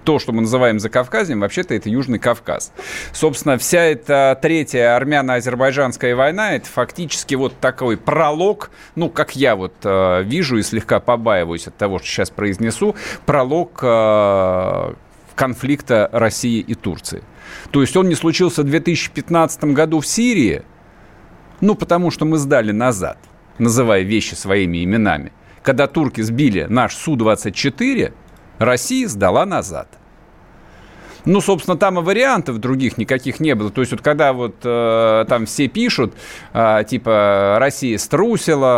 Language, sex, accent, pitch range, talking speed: Russian, male, native, 115-170 Hz, 140 wpm